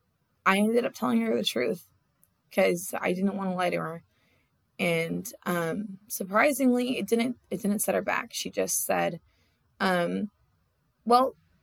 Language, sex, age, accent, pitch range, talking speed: English, female, 20-39, American, 175-220 Hz, 155 wpm